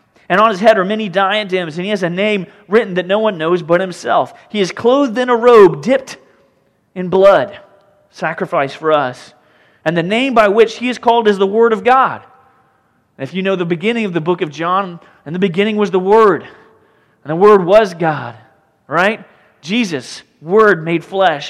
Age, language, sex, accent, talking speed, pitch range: 30-49, English, male, American, 195 wpm, 170-225 Hz